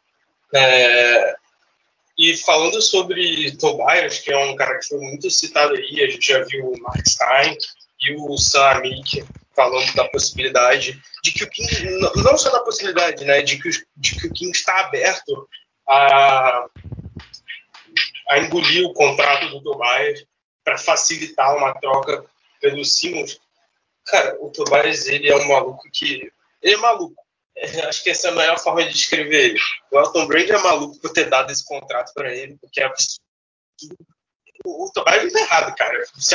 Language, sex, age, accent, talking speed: Portuguese, male, 20-39, Brazilian, 165 wpm